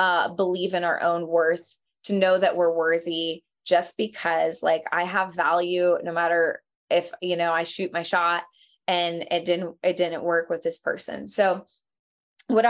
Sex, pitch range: female, 180-225 Hz